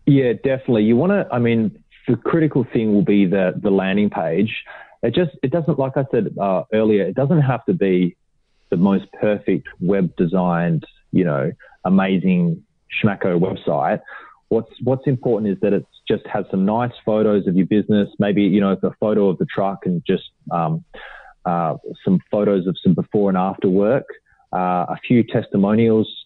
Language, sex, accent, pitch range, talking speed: English, male, Australian, 95-120 Hz, 180 wpm